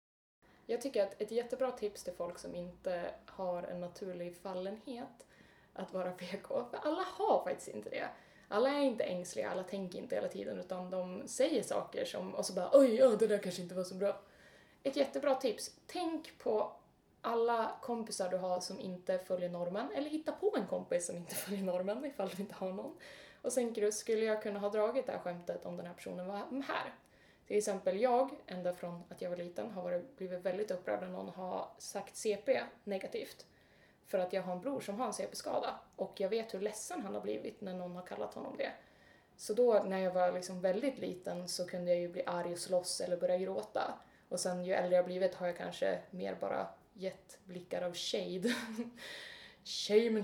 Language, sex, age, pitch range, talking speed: English, female, 20-39, 180-240 Hz, 205 wpm